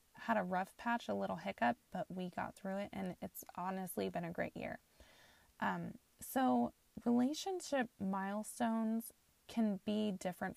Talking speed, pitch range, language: 150 wpm, 180-215 Hz, English